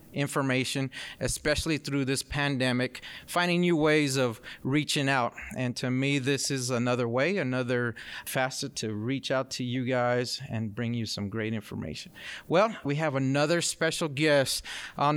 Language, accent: English, American